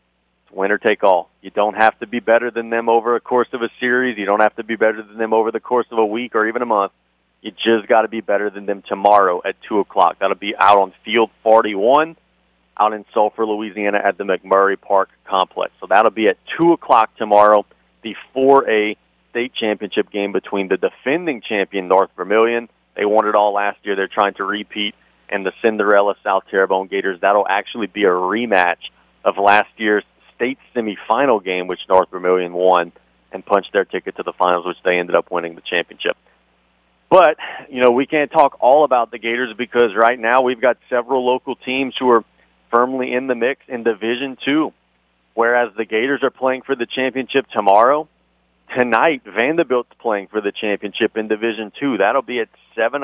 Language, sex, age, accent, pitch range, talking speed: English, male, 30-49, American, 100-120 Hz, 195 wpm